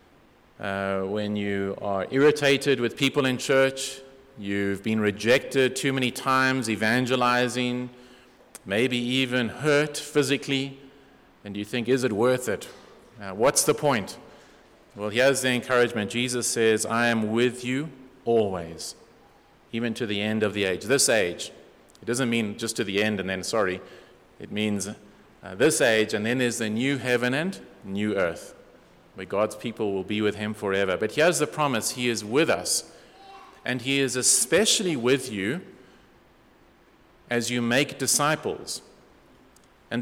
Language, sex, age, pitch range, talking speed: English, male, 30-49, 110-140 Hz, 155 wpm